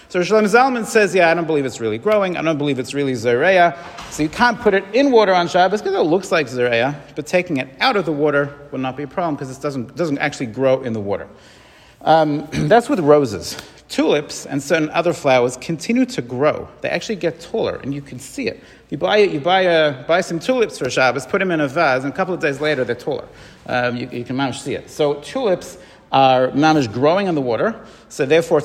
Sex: male